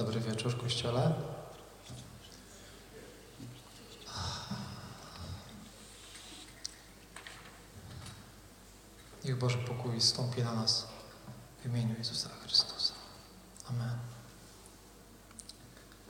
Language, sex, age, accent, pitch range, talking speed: Polish, male, 40-59, native, 110-130 Hz, 50 wpm